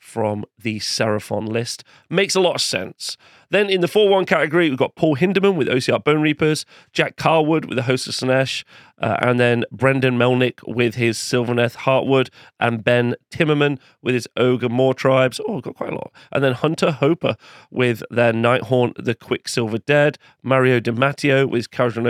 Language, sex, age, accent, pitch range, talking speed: English, male, 40-59, British, 120-145 Hz, 185 wpm